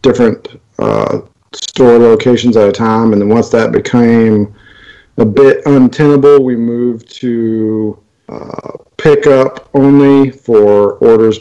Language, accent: English, American